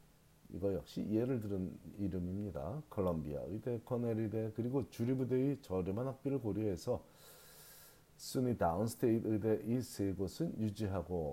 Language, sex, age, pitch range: Korean, male, 40-59, 90-130 Hz